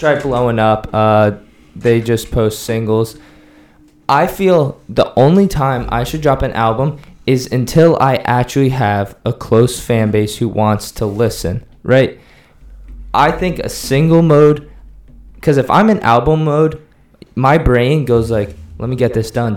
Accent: American